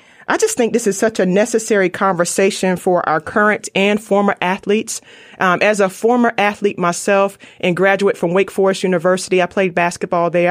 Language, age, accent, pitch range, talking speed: English, 30-49, American, 180-220 Hz, 175 wpm